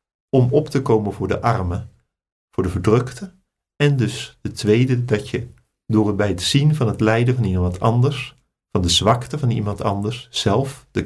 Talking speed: 190 wpm